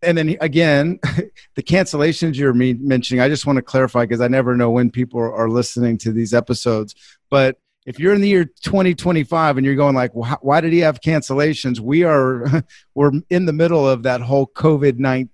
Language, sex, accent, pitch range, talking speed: English, male, American, 120-145 Hz, 190 wpm